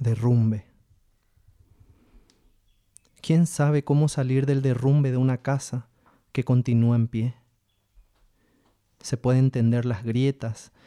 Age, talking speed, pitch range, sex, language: 30-49, 105 wpm, 100-125 Hz, male, Spanish